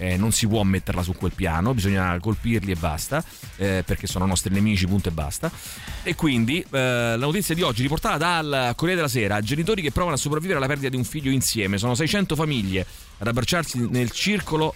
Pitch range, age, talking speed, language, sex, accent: 110-150 Hz, 30-49, 205 wpm, Italian, male, native